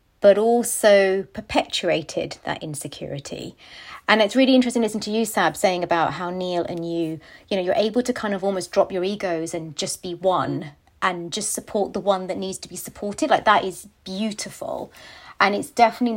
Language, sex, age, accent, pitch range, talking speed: English, female, 30-49, British, 175-215 Hz, 195 wpm